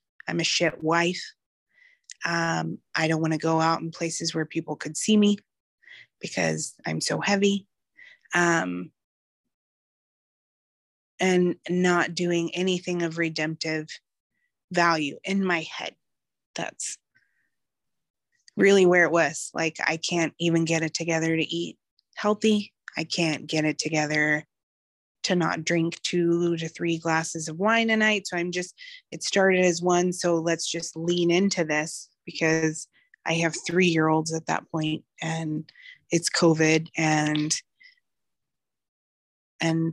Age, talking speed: 20-39, 135 wpm